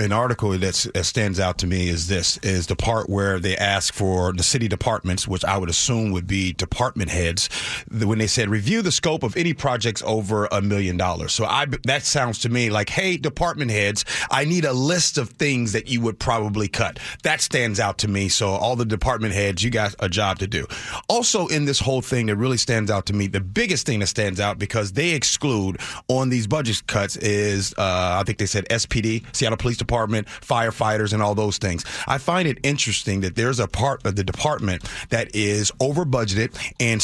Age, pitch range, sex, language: 30-49, 100-130 Hz, male, English